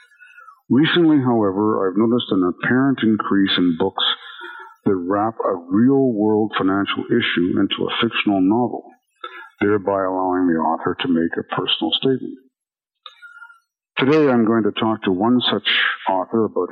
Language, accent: English, American